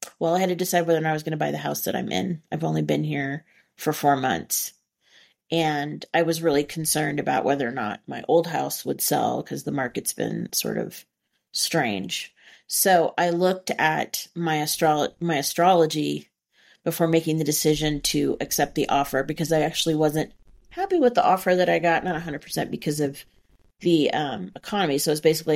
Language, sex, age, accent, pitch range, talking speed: English, female, 30-49, American, 150-180 Hz, 195 wpm